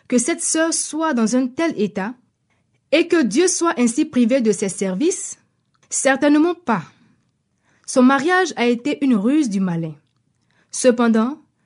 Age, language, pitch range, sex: 20-39, French, 220-300 Hz, female